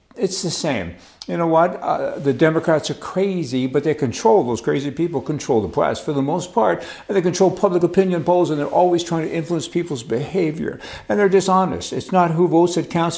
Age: 60-79